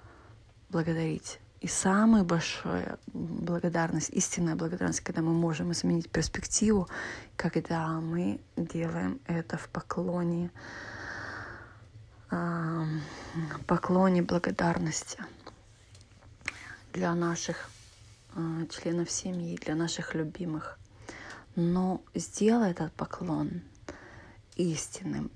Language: Russian